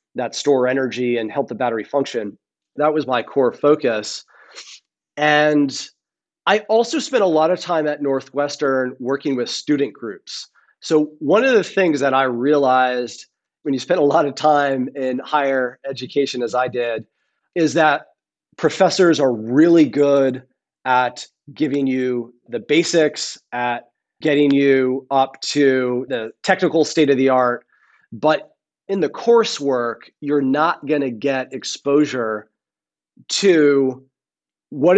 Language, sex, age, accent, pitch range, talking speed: English, male, 30-49, American, 130-155 Hz, 140 wpm